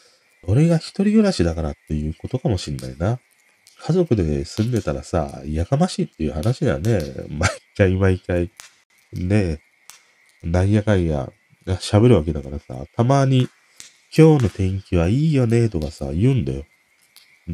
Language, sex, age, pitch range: Japanese, male, 40-59, 75-110 Hz